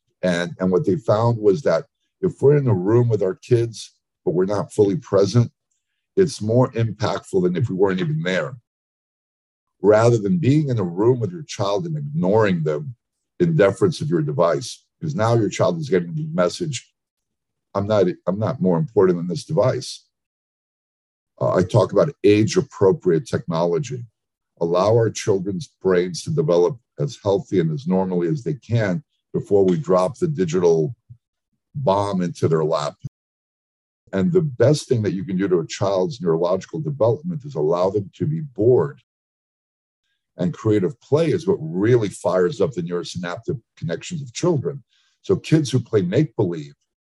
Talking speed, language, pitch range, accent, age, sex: 165 wpm, English, 100-155 Hz, American, 50-69, male